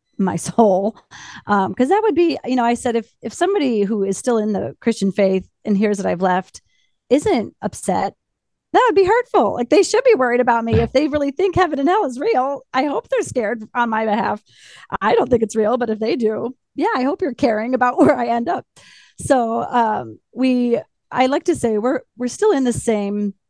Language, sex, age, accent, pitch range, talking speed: English, female, 30-49, American, 185-245 Hz, 220 wpm